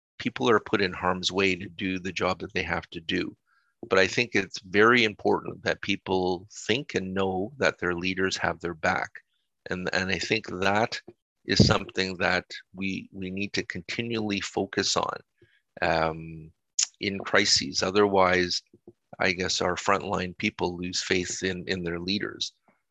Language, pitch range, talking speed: English, 95-110 Hz, 160 wpm